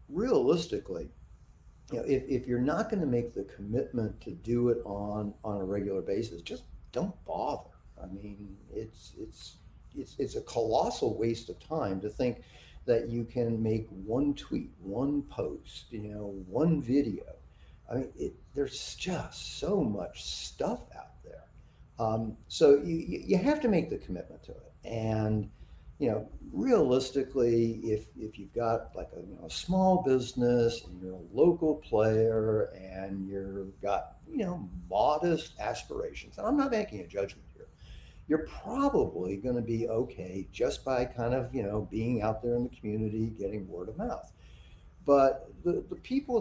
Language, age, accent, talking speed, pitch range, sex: English, 50-69, American, 165 wpm, 105-140 Hz, male